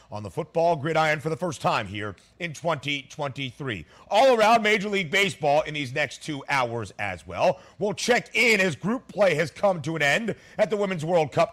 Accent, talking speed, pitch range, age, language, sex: American, 205 wpm, 145-200 Hz, 40-59, English, male